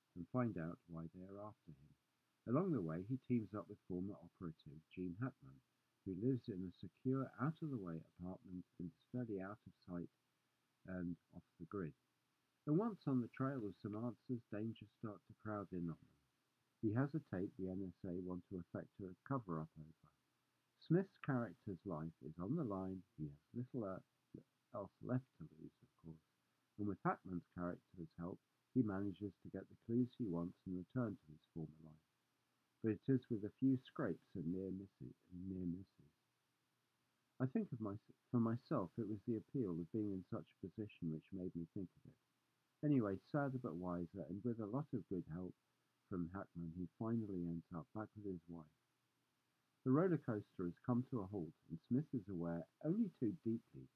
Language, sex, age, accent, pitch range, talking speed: English, male, 50-69, British, 90-125 Hz, 180 wpm